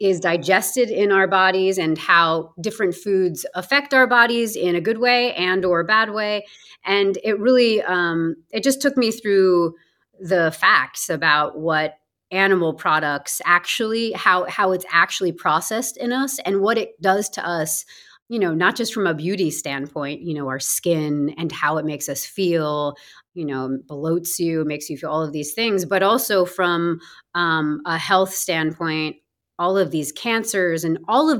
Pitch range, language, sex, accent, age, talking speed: 160-200 Hz, English, female, American, 30-49, 180 wpm